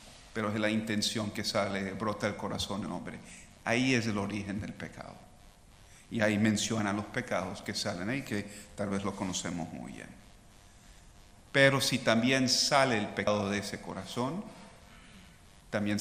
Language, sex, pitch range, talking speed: English, male, 100-120 Hz, 155 wpm